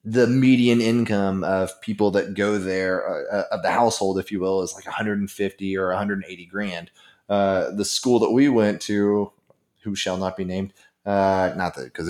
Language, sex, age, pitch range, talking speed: English, male, 20-39, 100-120 Hz, 185 wpm